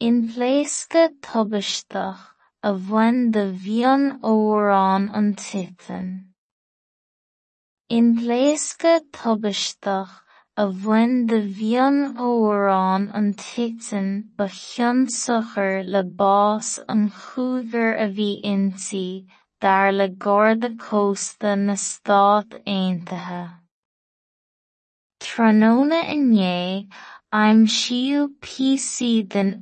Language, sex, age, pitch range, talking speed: English, female, 20-39, 195-235 Hz, 70 wpm